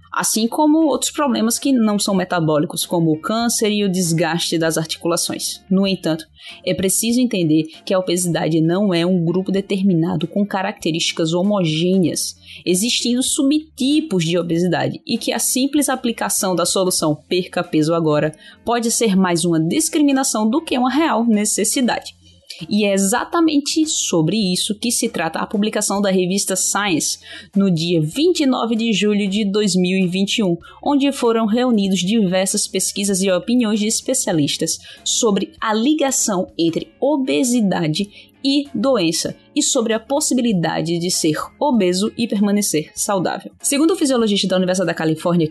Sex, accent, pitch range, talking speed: female, Brazilian, 170-235 Hz, 145 wpm